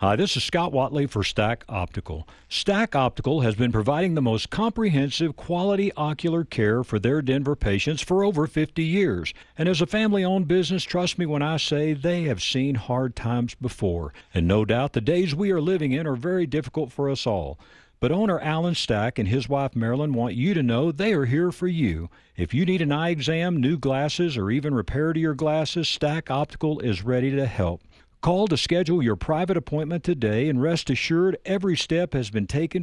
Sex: male